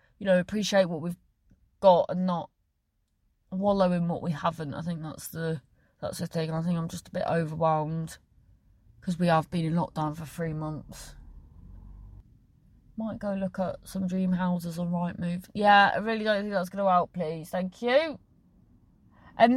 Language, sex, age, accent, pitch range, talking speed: English, female, 30-49, British, 155-210 Hz, 180 wpm